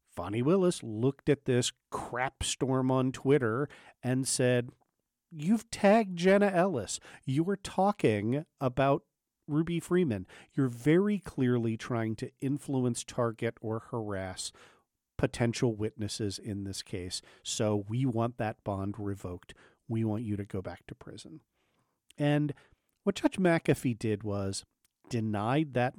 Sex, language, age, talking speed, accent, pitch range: male, English, 40-59, 130 wpm, American, 110-145 Hz